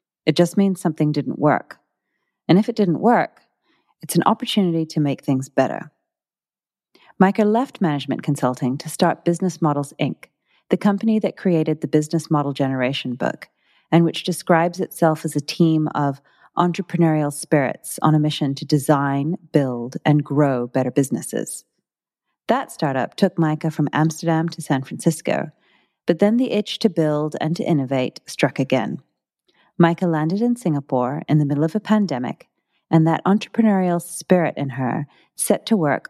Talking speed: 160 wpm